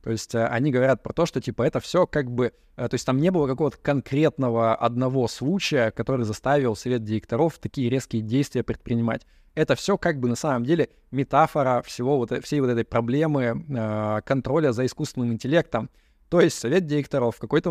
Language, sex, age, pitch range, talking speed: Russian, male, 20-39, 115-145 Hz, 175 wpm